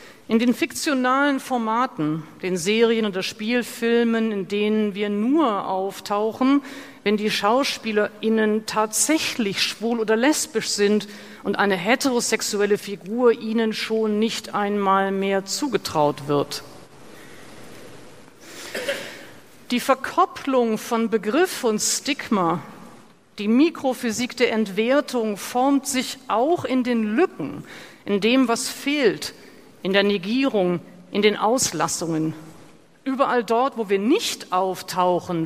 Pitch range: 200-265 Hz